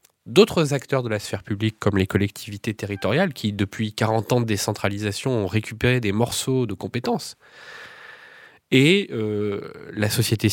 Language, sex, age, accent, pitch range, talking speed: French, male, 20-39, French, 105-130 Hz, 150 wpm